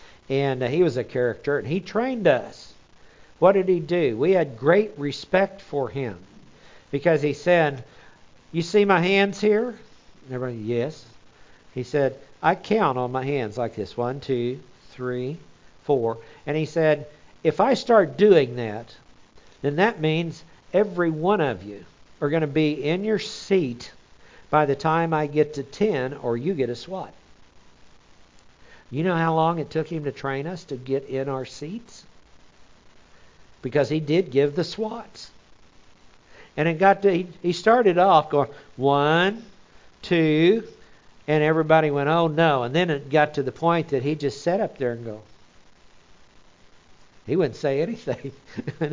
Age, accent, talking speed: 60-79, American, 160 wpm